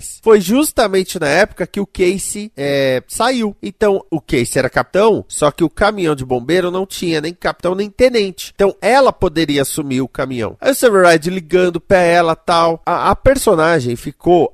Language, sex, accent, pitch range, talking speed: Portuguese, male, Brazilian, 135-205 Hz, 185 wpm